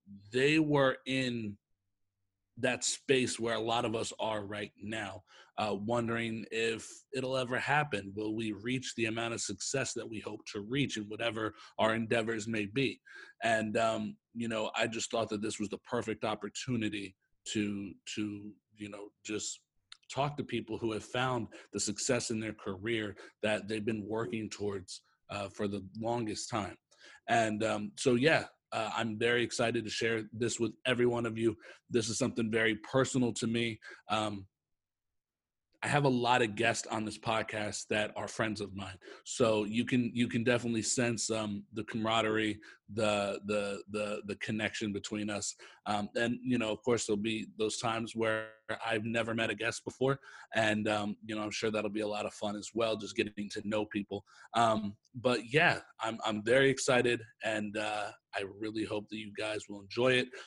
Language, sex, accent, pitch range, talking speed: English, male, American, 105-115 Hz, 185 wpm